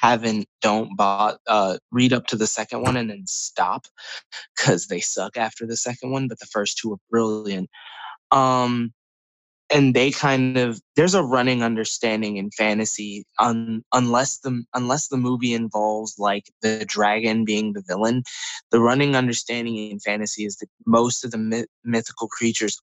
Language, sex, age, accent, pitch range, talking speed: English, male, 20-39, American, 105-125 Hz, 165 wpm